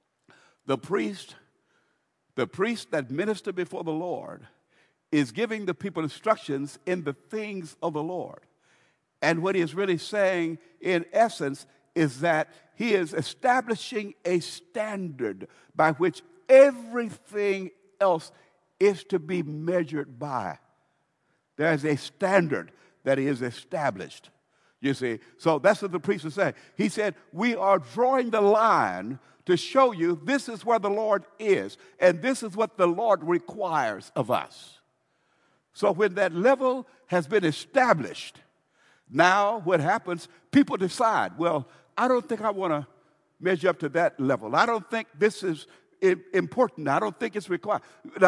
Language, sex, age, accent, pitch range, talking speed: English, male, 60-79, American, 165-225 Hz, 150 wpm